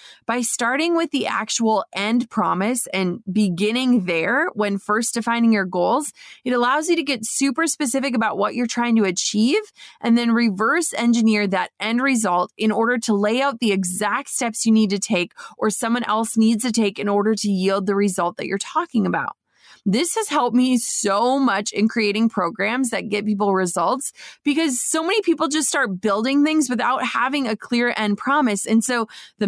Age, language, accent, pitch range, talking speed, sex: 20-39, English, American, 205-255 Hz, 190 wpm, female